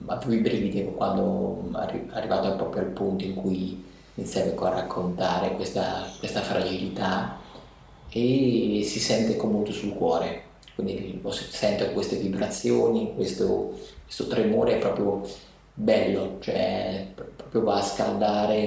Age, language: 30-49, Italian